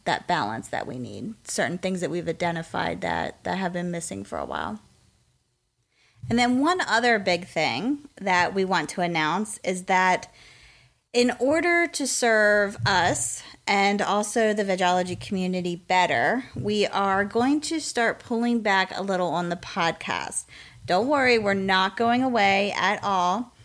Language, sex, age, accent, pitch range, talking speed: English, female, 30-49, American, 170-210 Hz, 155 wpm